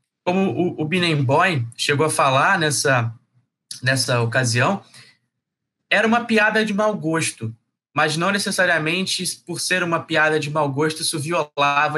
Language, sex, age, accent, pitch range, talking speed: Portuguese, male, 20-39, Brazilian, 145-205 Hz, 140 wpm